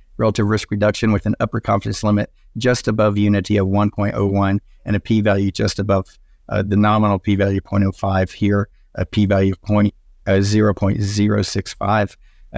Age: 50-69